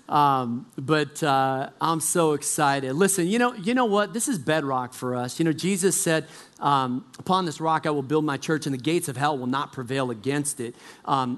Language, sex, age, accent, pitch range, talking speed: English, male, 40-59, American, 145-185 Hz, 215 wpm